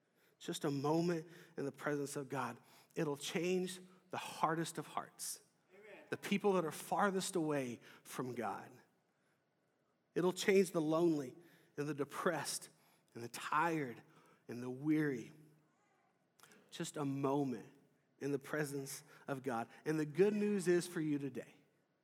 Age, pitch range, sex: 40-59, 140-170 Hz, male